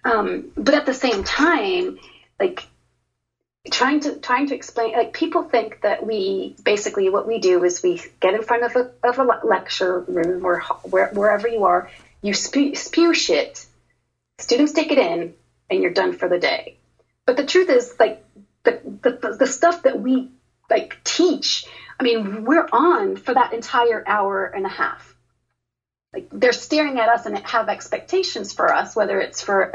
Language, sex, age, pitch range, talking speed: English, female, 30-49, 195-320 Hz, 180 wpm